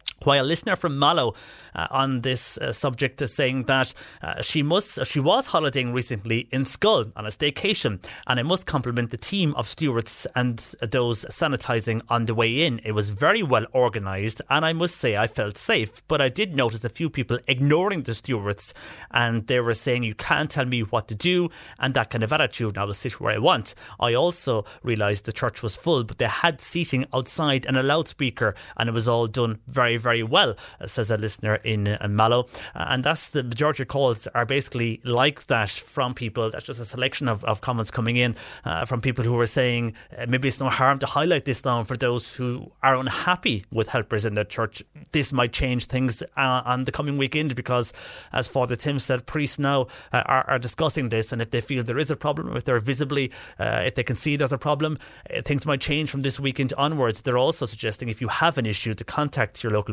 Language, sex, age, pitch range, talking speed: English, male, 30-49, 115-140 Hz, 220 wpm